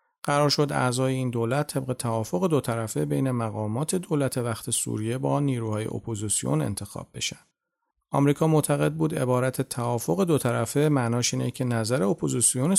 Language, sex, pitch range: Persian, male, 115-145 Hz